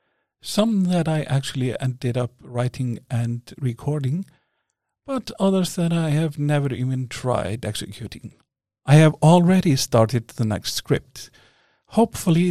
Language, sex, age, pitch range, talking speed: English, male, 50-69, 115-155 Hz, 125 wpm